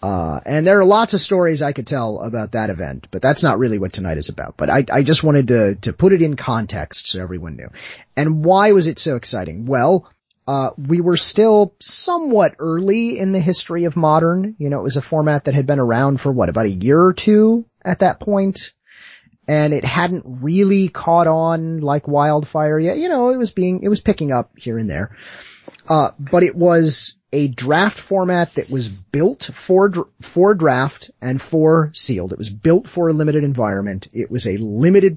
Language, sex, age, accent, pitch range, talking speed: English, male, 30-49, American, 115-175 Hz, 205 wpm